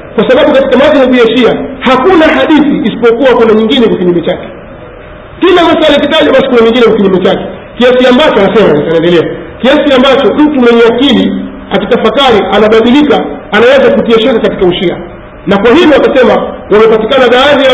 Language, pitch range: Swahili, 215-270 Hz